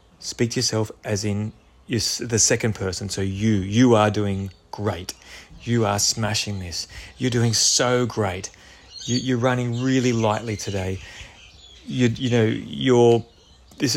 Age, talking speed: 30-49, 140 wpm